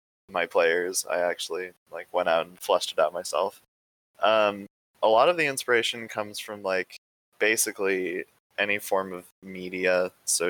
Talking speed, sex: 155 wpm, male